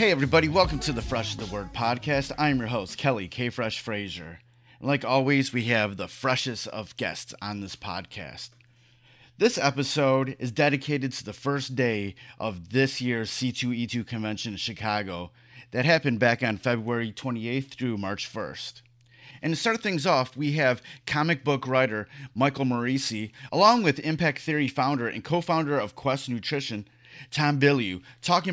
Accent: American